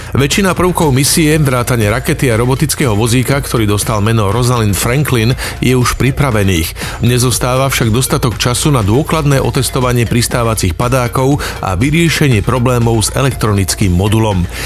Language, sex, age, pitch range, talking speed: Slovak, male, 40-59, 115-140 Hz, 125 wpm